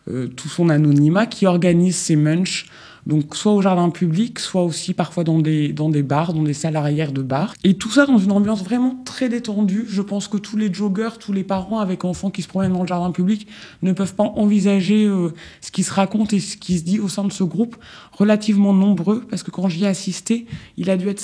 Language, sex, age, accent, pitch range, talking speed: French, male, 20-39, French, 165-205 Hz, 240 wpm